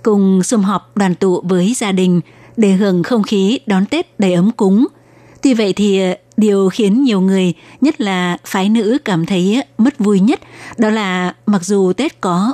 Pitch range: 190-235 Hz